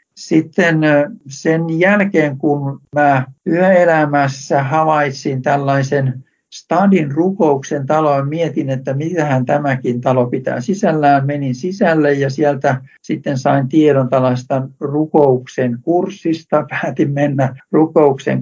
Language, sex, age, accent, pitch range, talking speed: Finnish, male, 60-79, native, 130-155 Hz, 100 wpm